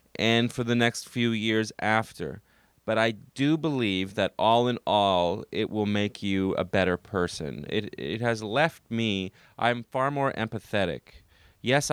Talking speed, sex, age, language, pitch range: 160 wpm, male, 30-49, English, 90-115 Hz